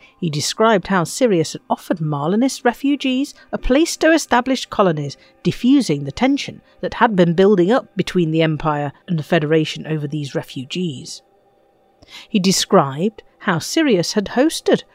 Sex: female